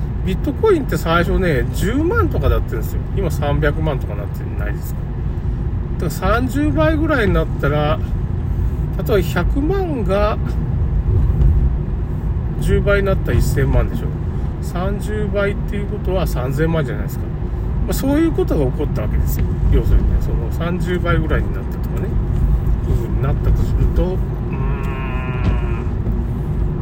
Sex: male